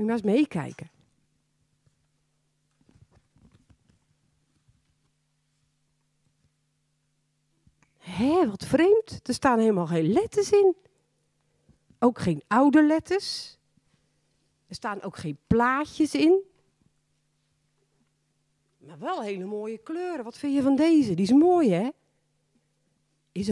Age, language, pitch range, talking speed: 40-59, Dutch, 155-235 Hz, 95 wpm